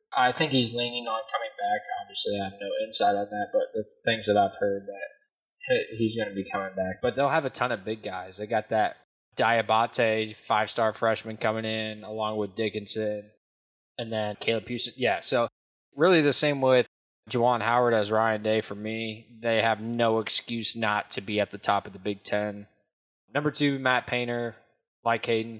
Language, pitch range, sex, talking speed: English, 105-130 Hz, male, 195 wpm